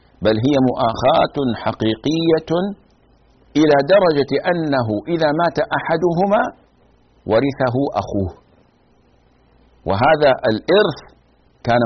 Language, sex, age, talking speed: Arabic, male, 50-69, 75 wpm